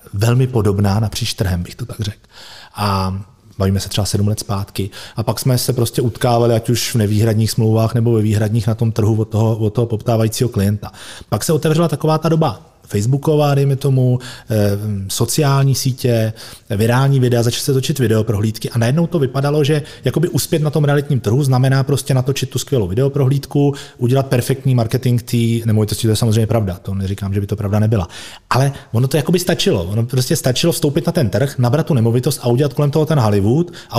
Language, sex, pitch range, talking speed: Czech, male, 110-140 Hz, 190 wpm